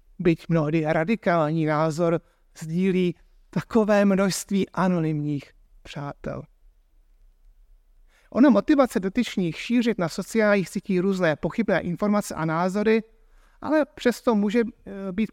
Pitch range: 165-215 Hz